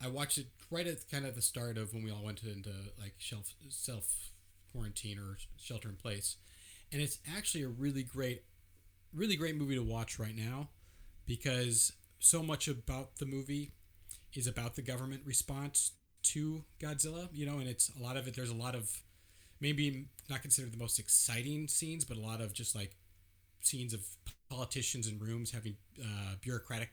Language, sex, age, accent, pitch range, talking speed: English, male, 30-49, American, 100-135 Hz, 185 wpm